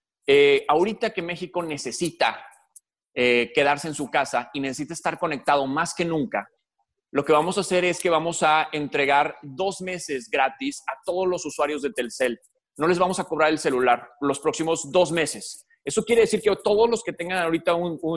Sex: male